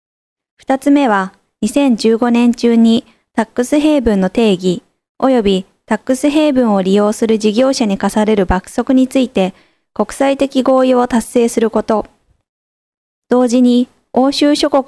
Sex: female